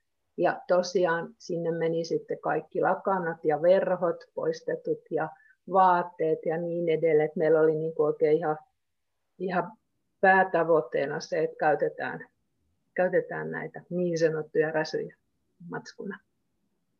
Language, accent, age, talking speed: Finnish, native, 50-69, 105 wpm